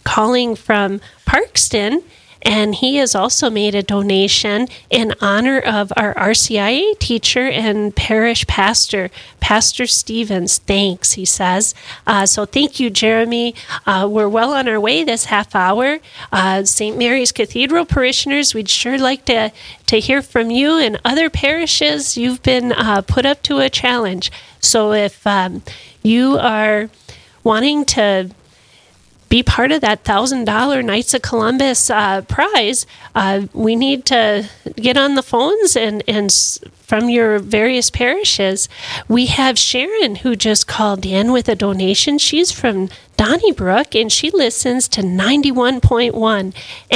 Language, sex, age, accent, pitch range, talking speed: English, female, 40-59, American, 200-250 Hz, 140 wpm